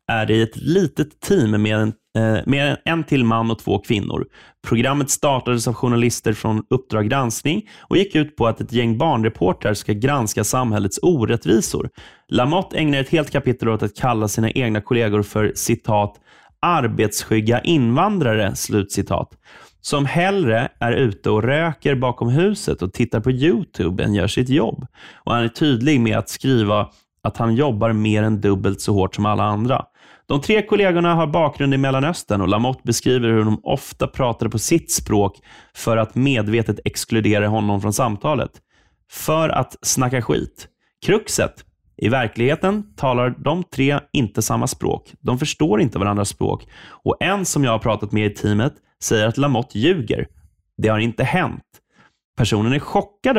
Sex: male